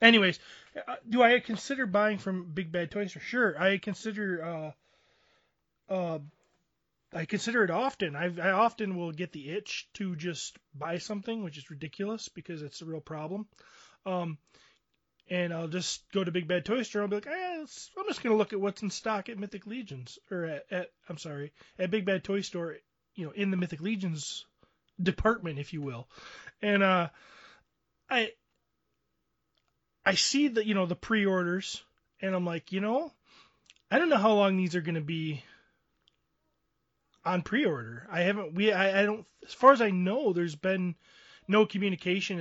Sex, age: male, 20-39